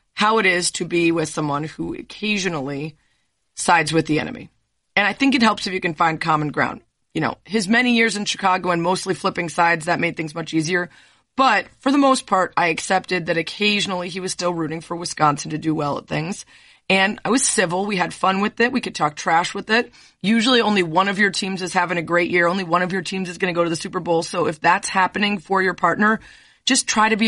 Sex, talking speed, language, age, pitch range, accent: female, 240 wpm, English, 30-49, 165-200 Hz, American